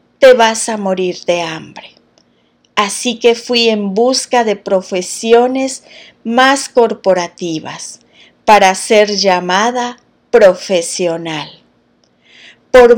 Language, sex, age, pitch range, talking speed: Spanish, female, 40-59, 190-245 Hz, 90 wpm